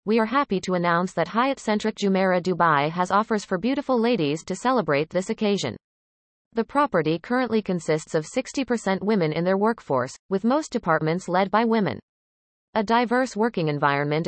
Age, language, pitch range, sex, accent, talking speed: 30-49, English, 170-230 Hz, female, American, 165 wpm